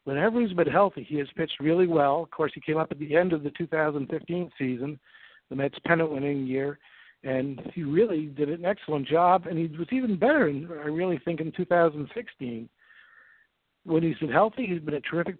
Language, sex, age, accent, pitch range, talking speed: English, male, 60-79, American, 145-190 Hz, 205 wpm